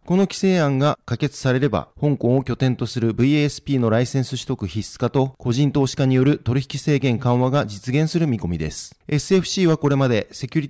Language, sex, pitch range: Japanese, male, 120-150 Hz